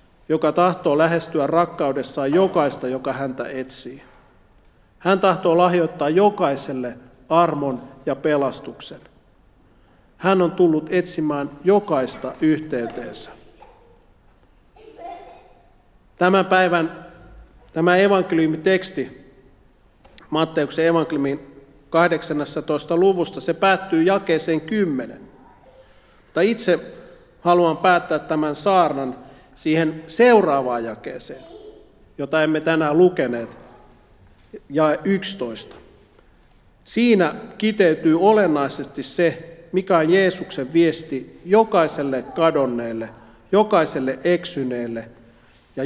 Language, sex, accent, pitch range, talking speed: Finnish, male, native, 135-180 Hz, 80 wpm